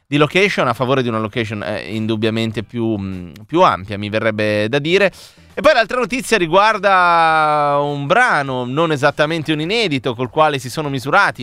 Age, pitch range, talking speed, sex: 30-49, 105-140 Hz, 175 wpm, male